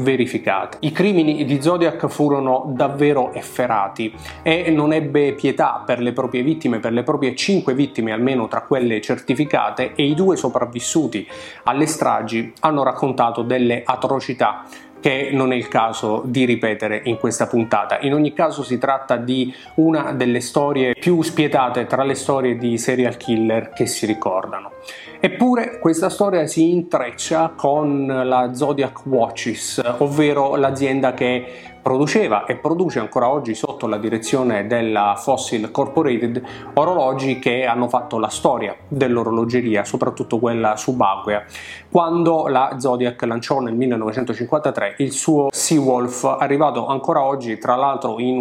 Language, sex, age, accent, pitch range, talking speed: Italian, male, 30-49, native, 120-150 Hz, 140 wpm